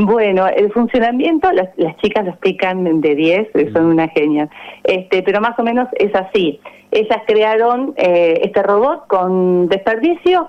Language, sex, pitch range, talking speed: Spanish, female, 175-245 Hz, 155 wpm